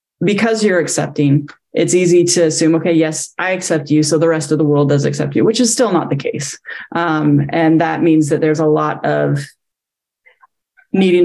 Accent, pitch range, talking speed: American, 155-170 Hz, 195 wpm